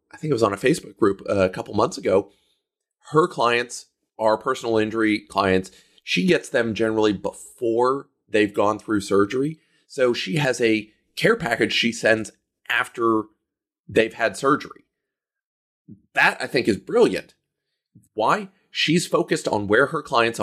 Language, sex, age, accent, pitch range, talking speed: English, male, 30-49, American, 100-135 Hz, 150 wpm